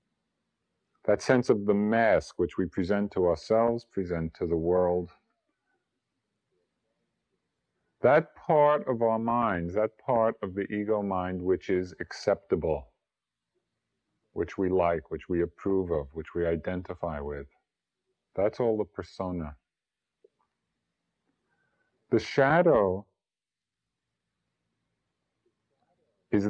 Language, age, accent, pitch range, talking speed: English, 50-69, American, 90-115 Hz, 105 wpm